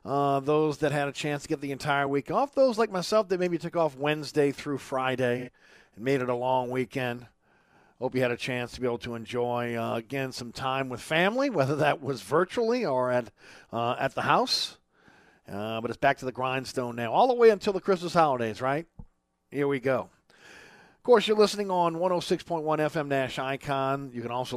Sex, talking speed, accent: male, 210 wpm, American